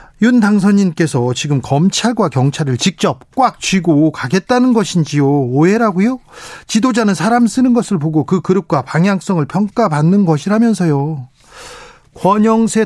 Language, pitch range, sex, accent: Korean, 155-200 Hz, male, native